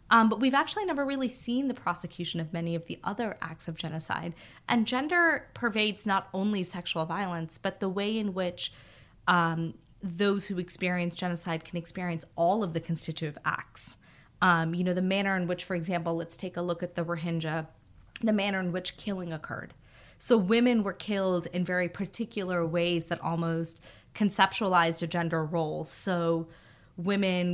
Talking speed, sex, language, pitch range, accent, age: 170 wpm, female, English, 165-185 Hz, American, 20-39